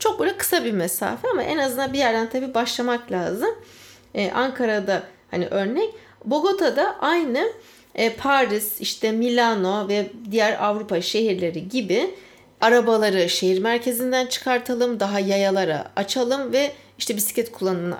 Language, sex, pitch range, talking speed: Turkish, female, 195-280 Hz, 130 wpm